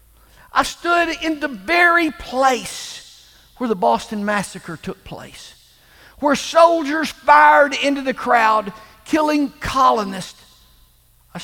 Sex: male